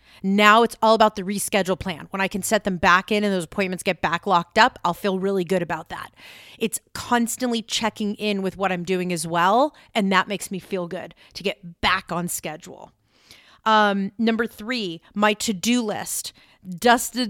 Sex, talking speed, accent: female, 190 wpm, American